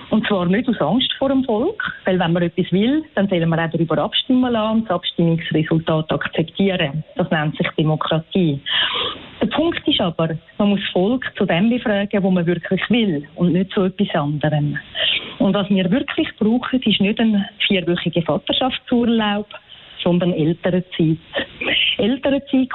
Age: 40-59